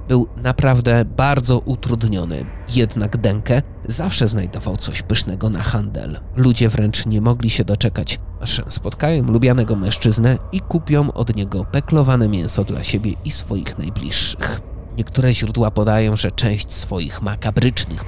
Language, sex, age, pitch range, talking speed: Polish, male, 30-49, 100-120 Hz, 135 wpm